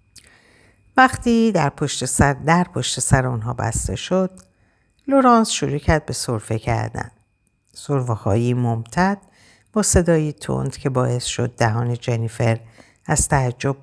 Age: 50-69